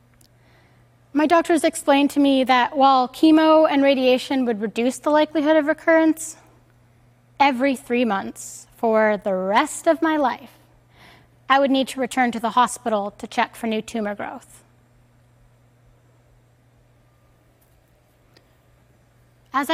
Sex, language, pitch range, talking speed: female, Arabic, 200-285 Hz, 120 wpm